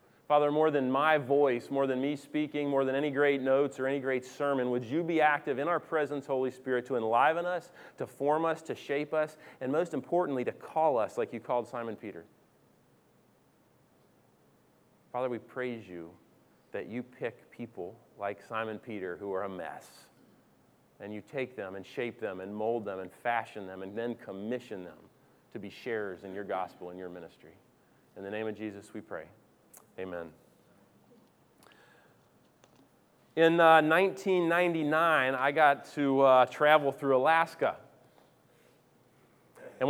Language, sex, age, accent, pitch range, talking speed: English, male, 30-49, American, 115-150 Hz, 160 wpm